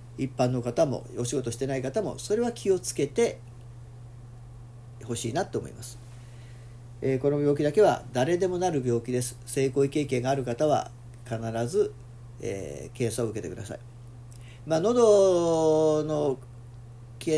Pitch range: 120-175 Hz